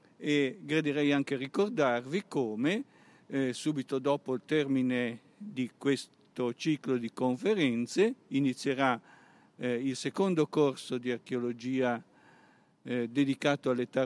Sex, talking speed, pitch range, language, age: male, 105 wpm, 120-150 Hz, Italian, 50-69